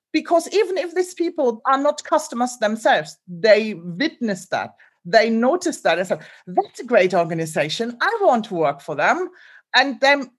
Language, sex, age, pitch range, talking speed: English, female, 40-59, 215-285 Hz, 170 wpm